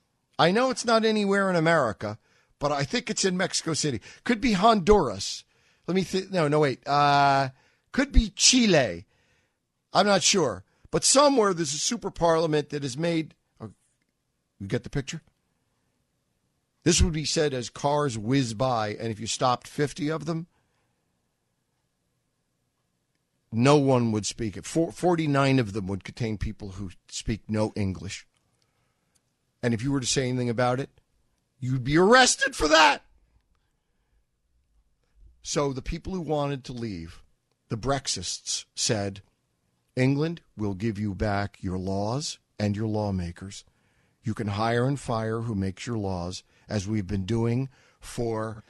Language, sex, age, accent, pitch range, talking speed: English, male, 50-69, American, 105-165 Hz, 150 wpm